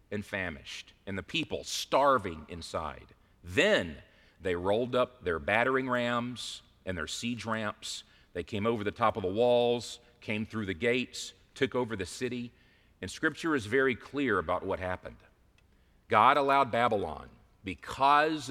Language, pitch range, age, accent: English, 105-135 Hz, 40-59, American